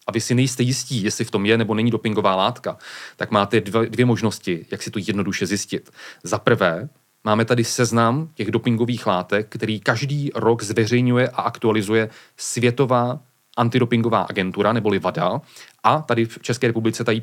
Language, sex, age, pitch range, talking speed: Czech, male, 30-49, 110-125 Hz, 160 wpm